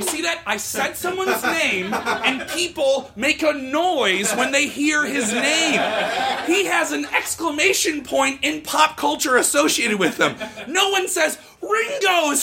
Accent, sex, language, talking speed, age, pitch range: American, male, English, 150 wpm, 30-49, 215-320 Hz